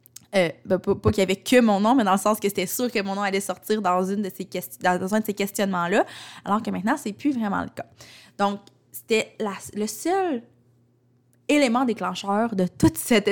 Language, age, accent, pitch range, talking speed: French, 20-39, Canadian, 185-220 Hz, 235 wpm